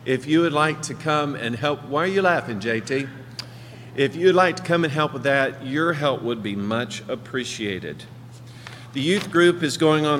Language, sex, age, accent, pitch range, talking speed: English, male, 50-69, American, 125-165 Hz, 200 wpm